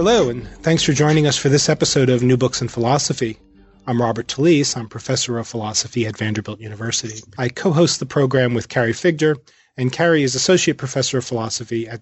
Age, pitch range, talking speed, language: 30-49, 115-155 Hz, 195 wpm, English